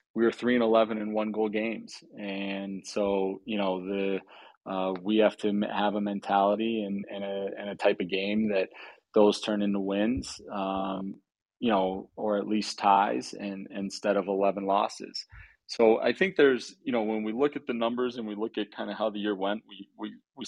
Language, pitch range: English, 95-105 Hz